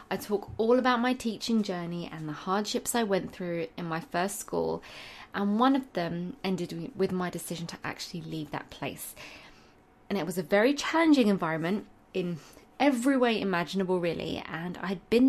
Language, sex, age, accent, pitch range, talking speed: English, female, 20-39, British, 175-225 Hz, 180 wpm